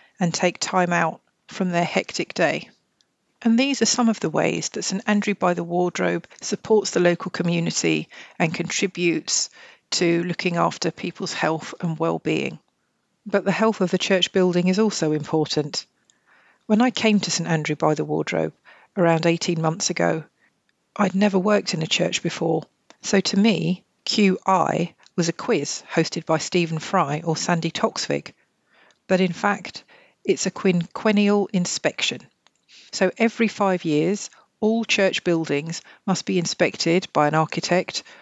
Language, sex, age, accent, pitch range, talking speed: English, female, 50-69, British, 165-200 Hz, 155 wpm